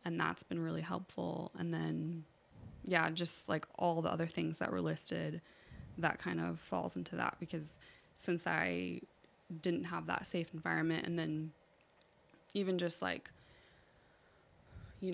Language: English